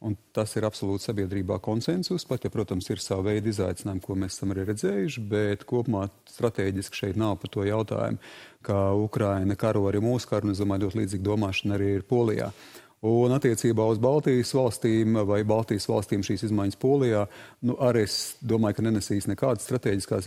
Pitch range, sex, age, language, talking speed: 100-120 Hz, male, 40-59, English, 160 wpm